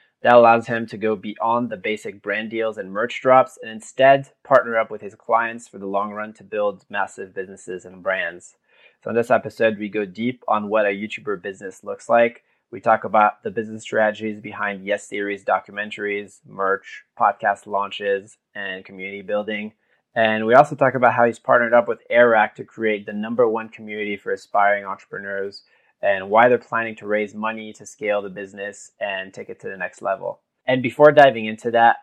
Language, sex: English, male